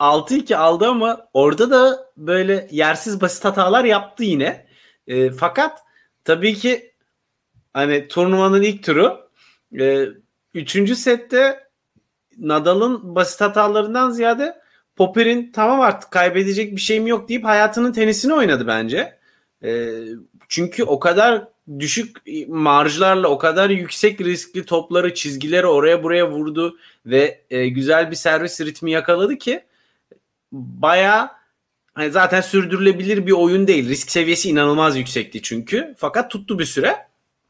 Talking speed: 120 wpm